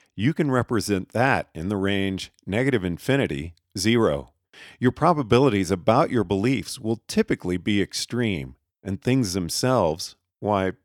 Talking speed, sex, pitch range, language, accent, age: 125 wpm, male, 95-125 Hz, English, American, 50-69